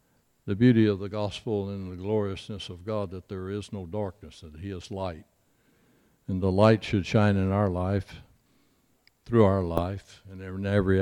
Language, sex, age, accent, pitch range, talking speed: English, male, 60-79, American, 90-110 Hz, 180 wpm